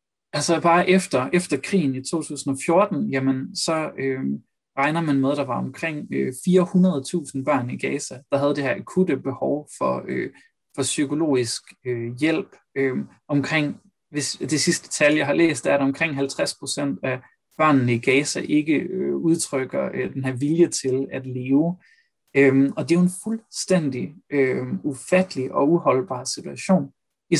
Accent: native